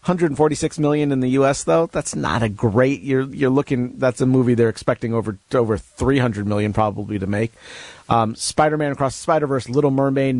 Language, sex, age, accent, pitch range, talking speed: English, male, 40-59, American, 115-150 Hz, 200 wpm